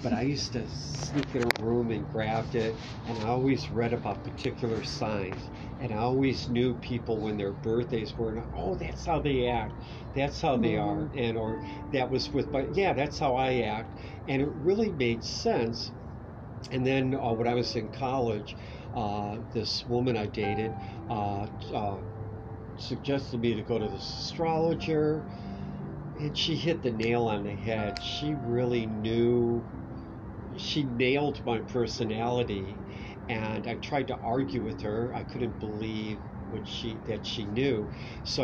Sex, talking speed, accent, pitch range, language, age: male, 160 wpm, American, 105-125 Hz, English, 50-69